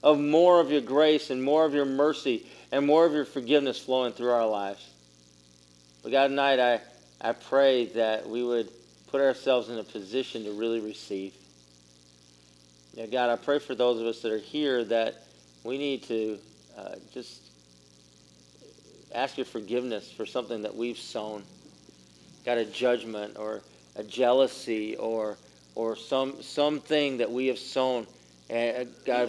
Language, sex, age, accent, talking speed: English, male, 40-59, American, 160 wpm